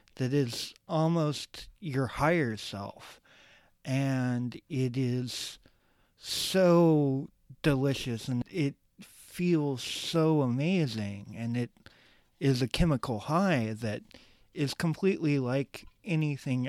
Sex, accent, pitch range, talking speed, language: male, American, 120-150 Hz, 95 wpm, English